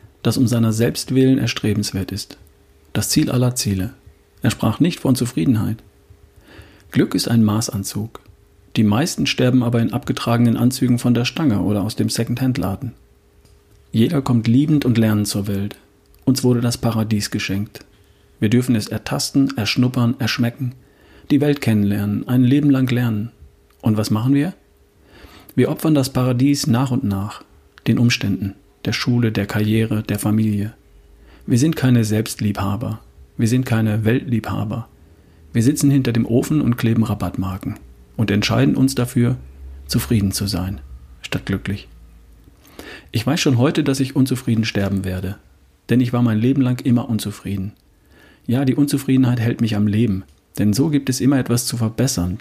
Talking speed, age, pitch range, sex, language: 155 wpm, 40-59, 100-125 Hz, male, German